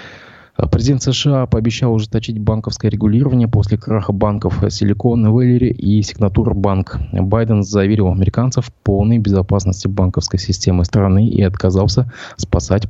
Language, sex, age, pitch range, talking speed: Russian, male, 20-39, 95-110 Hz, 115 wpm